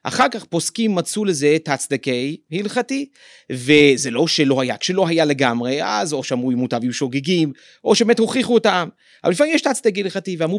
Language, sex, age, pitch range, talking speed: Hebrew, male, 30-49, 135-190 Hz, 185 wpm